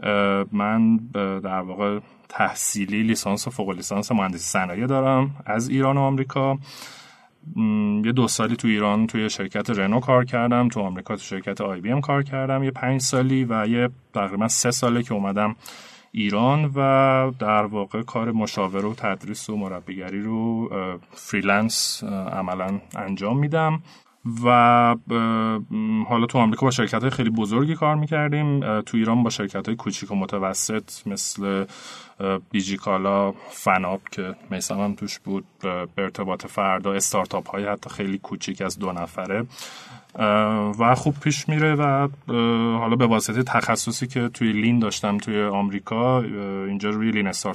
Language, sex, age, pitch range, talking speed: Persian, male, 30-49, 100-125 Hz, 145 wpm